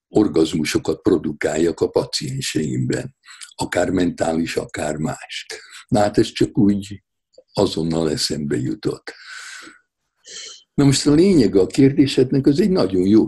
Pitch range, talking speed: 85-135 Hz, 120 wpm